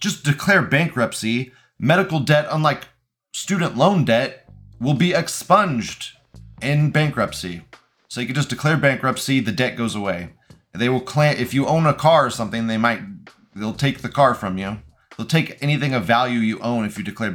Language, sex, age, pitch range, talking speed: English, male, 30-49, 115-145 Hz, 180 wpm